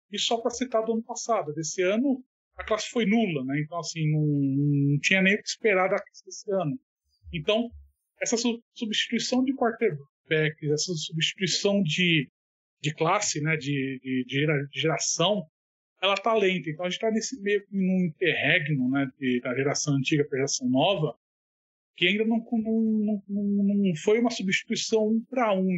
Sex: male